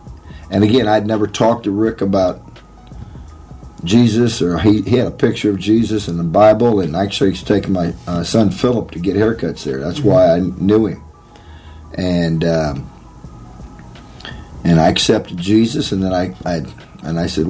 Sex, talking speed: male, 170 wpm